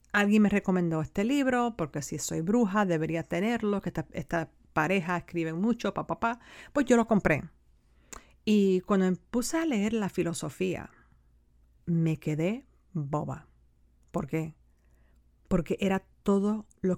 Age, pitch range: 40-59, 155-200 Hz